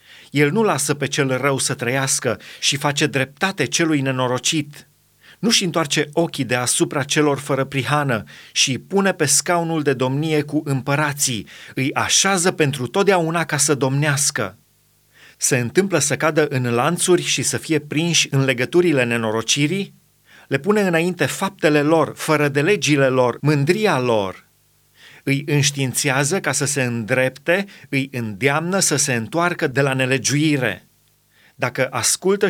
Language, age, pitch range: Romanian, 30-49, 135-160 Hz